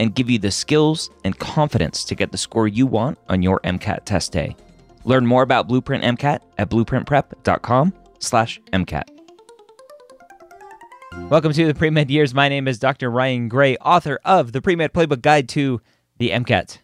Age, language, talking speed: 30-49, English, 165 wpm